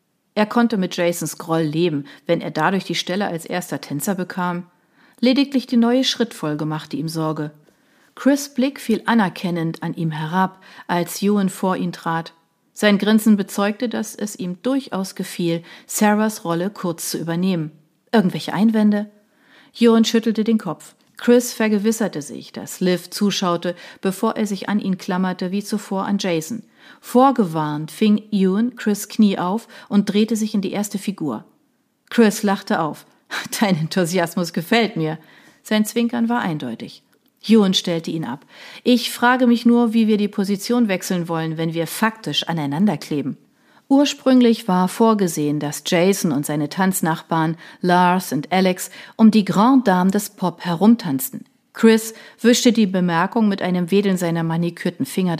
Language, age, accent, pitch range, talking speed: German, 40-59, German, 170-230 Hz, 150 wpm